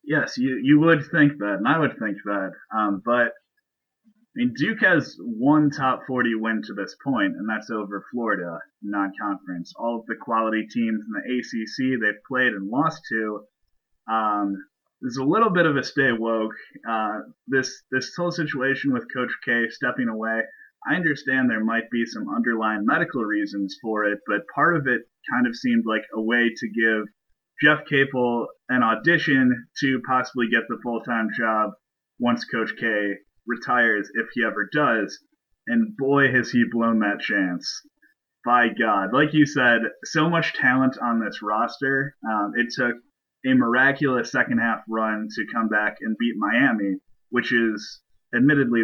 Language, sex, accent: English, male, American